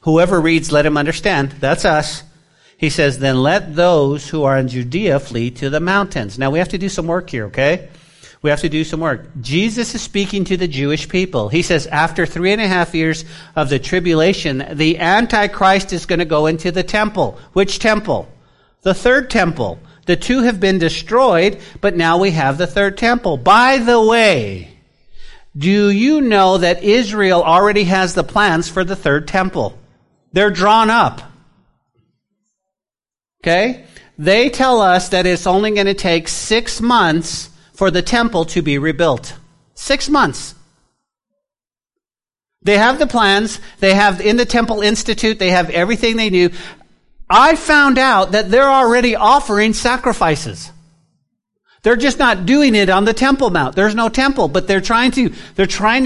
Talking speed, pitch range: 170 wpm, 160-220 Hz